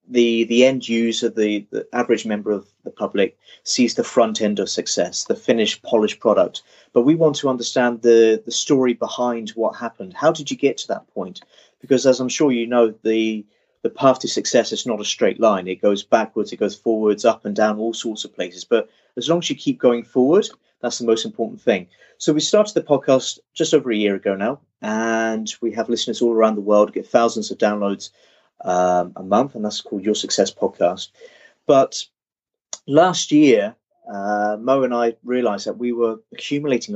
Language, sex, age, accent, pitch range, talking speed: English, male, 30-49, British, 105-130 Hz, 205 wpm